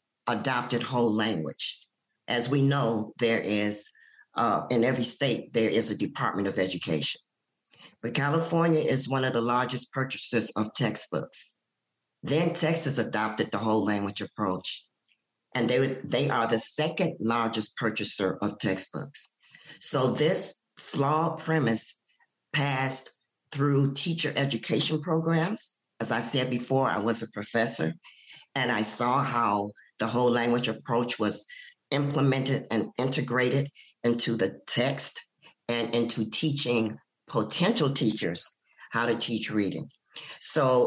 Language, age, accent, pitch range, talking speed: English, 50-69, American, 110-140 Hz, 130 wpm